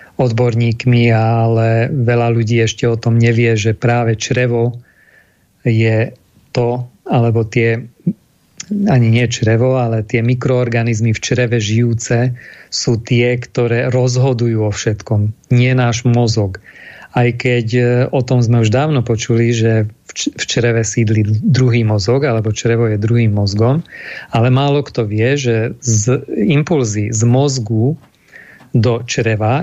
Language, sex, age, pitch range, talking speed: Slovak, male, 40-59, 115-125 Hz, 130 wpm